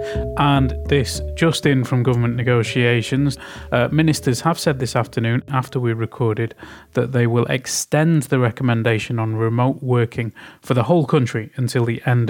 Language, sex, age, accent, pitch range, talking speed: Finnish, male, 30-49, British, 115-135 Hz, 155 wpm